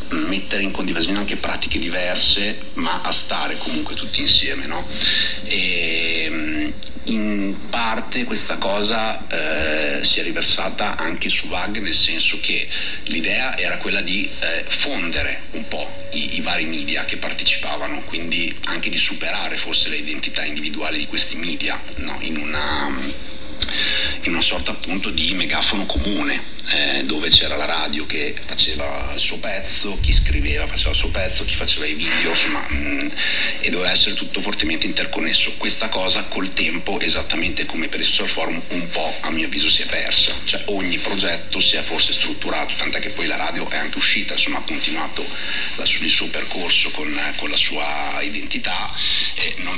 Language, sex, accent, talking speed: Italian, male, native, 160 wpm